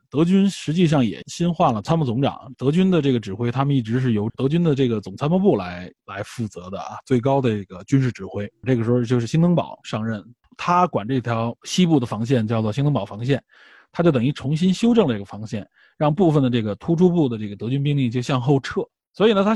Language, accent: Chinese, native